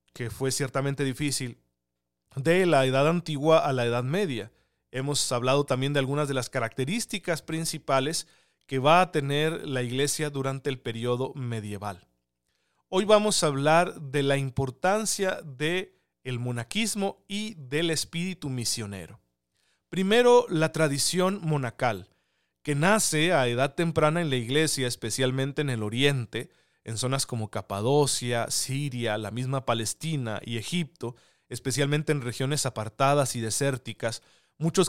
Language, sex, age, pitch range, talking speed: Spanish, male, 40-59, 125-155 Hz, 130 wpm